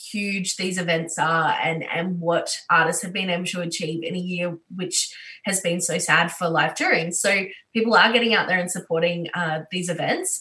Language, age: English, 20-39